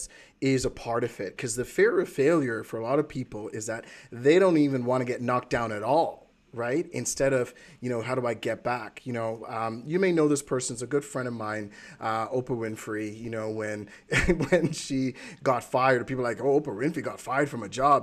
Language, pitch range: English, 115-145 Hz